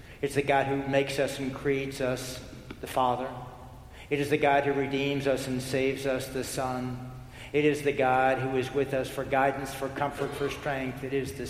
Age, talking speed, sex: 60-79, 210 wpm, male